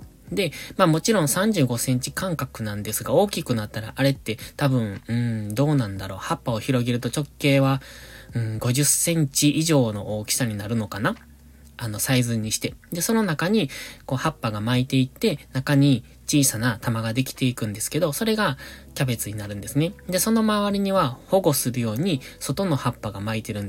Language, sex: Japanese, male